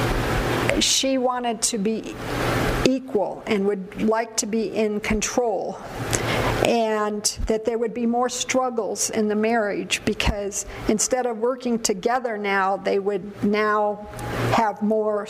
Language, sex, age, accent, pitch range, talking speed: English, female, 50-69, American, 210-250 Hz, 130 wpm